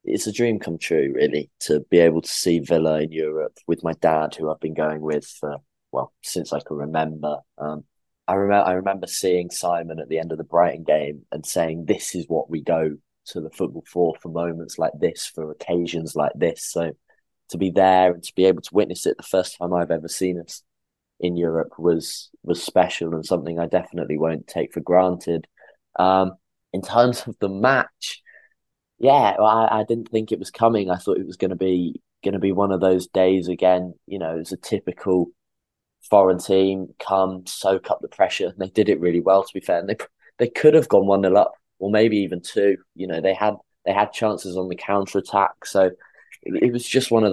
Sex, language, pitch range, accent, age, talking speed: male, English, 85-100 Hz, British, 20-39, 215 wpm